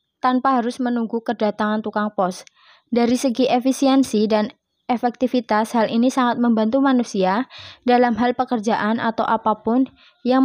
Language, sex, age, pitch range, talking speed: Indonesian, female, 20-39, 220-250 Hz, 125 wpm